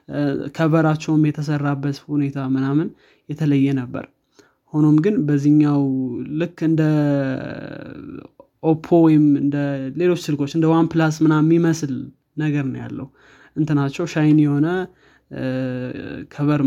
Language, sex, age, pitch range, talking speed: Amharic, male, 20-39, 140-160 Hz, 95 wpm